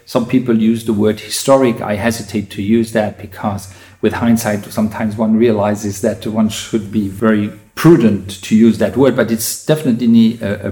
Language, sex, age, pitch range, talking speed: English, male, 50-69, 110-135 Hz, 175 wpm